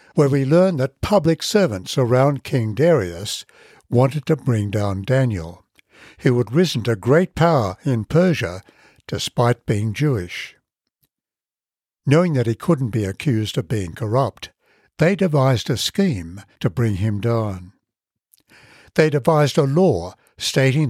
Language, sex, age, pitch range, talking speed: English, male, 60-79, 110-150 Hz, 135 wpm